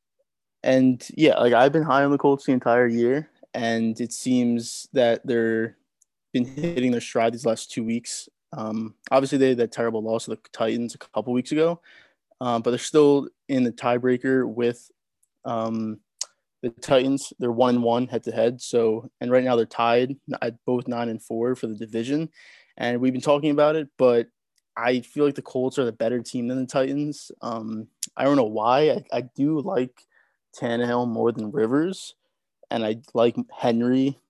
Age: 20-39